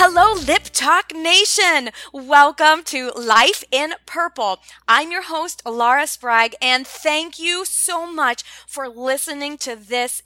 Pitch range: 230-310 Hz